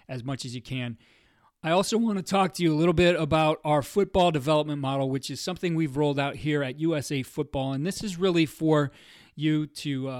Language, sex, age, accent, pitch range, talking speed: English, male, 30-49, American, 130-155 Hz, 225 wpm